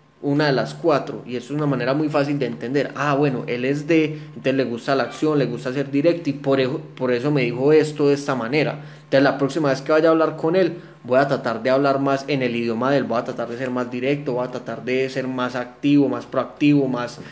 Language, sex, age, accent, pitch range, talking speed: Spanish, male, 20-39, Colombian, 130-150 Hz, 265 wpm